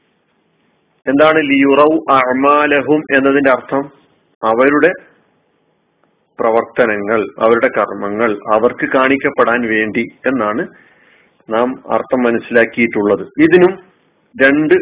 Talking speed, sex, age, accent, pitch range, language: 75 wpm, male, 40-59, native, 115-155 Hz, Malayalam